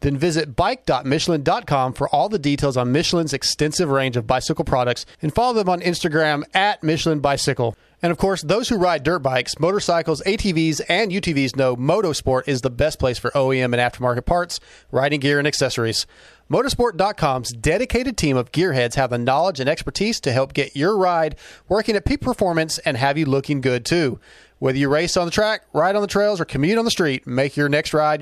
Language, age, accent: English, 30-49, American